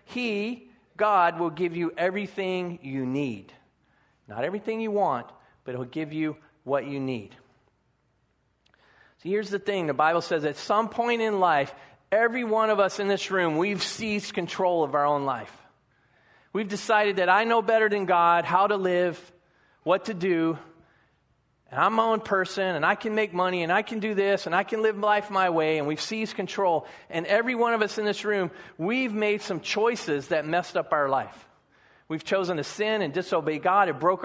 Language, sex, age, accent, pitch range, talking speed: English, male, 40-59, American, 170-210 Hz, 195 wpm